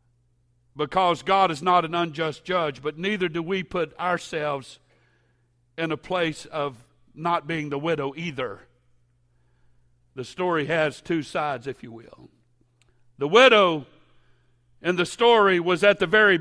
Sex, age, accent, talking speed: male, 60-79, American, 145 wpm